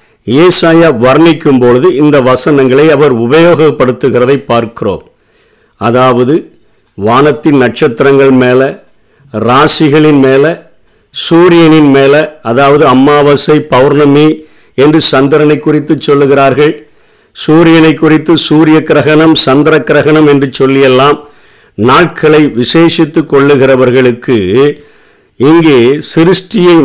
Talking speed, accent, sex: 75 wpm, native, male